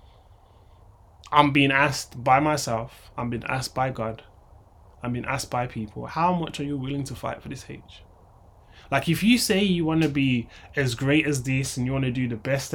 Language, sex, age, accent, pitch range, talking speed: English, male, 20-39, British, 90-135 Hz, 205 wpm